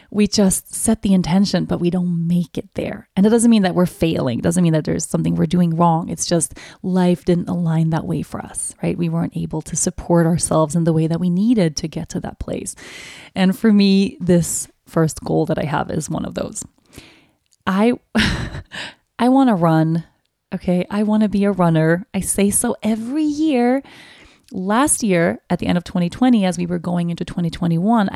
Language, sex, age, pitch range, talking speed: English, female, 20-39, 170-215 Hz, 205 wpm